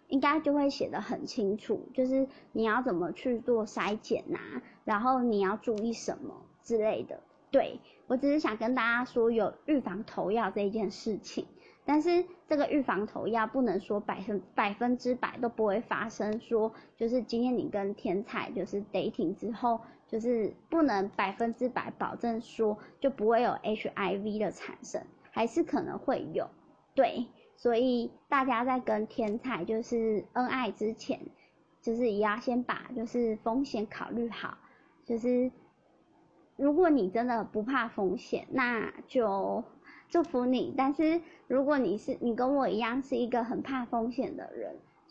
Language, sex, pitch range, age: Chinese, male, 215-265 Hz, 20-39